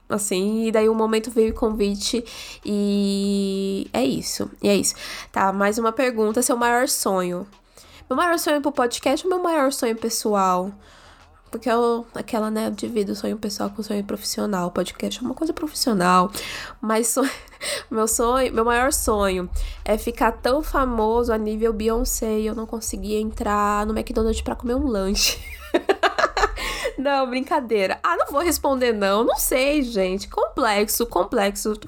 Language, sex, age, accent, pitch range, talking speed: Portuguese, female, 10-29, Brazilian, 215-270 Hz, 160 wpm